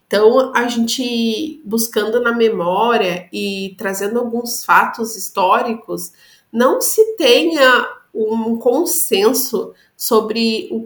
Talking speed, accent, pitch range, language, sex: 100 wpm, Brazilian, 180-230 Hz, Portuguese, female